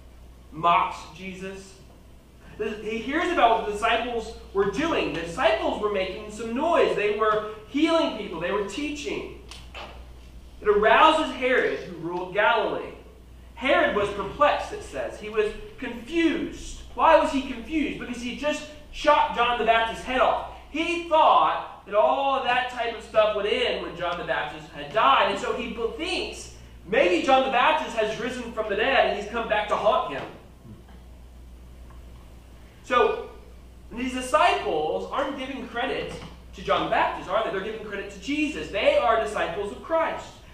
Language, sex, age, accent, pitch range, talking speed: English, male, 30-49, American, 190-300 Hz, 160 wpm